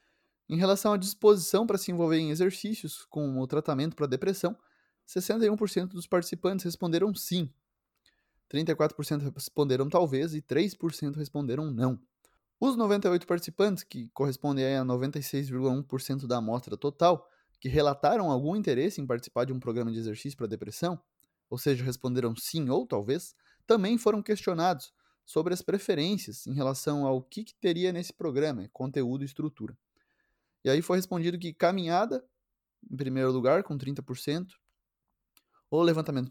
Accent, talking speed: Brazilian, 140 wpm